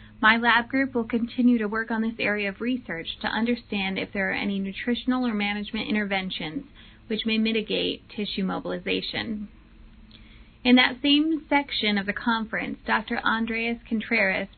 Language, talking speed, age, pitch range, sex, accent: English, 150 wpm, 20-39, 195-245 Hz, female, American